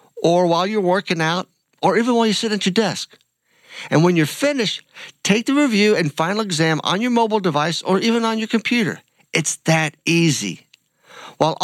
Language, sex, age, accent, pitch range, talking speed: English, male, 50-69, American, 135-185 Hz, 185 wpm